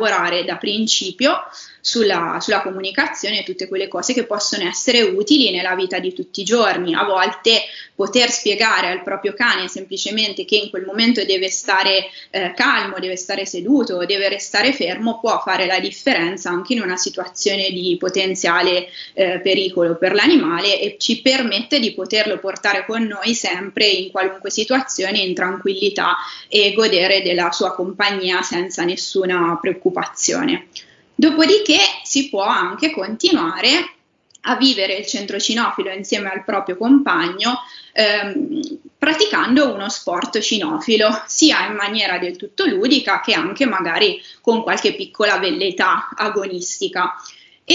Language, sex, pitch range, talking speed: Italian, female, 190-250 Hz, 140 wpm